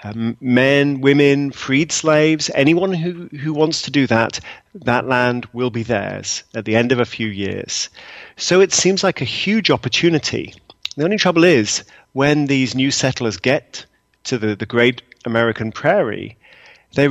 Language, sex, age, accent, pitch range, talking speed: English, male, 40-59, British, 115-150 Hz, 165 wpm